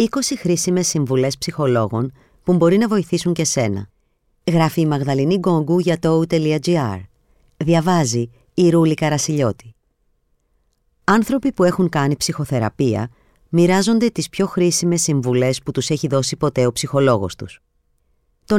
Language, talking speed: Greek, 125 wpm